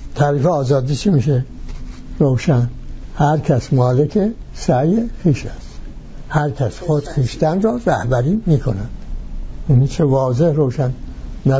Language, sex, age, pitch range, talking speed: English, male, 60-79, 125-155 Hz, 120 wpm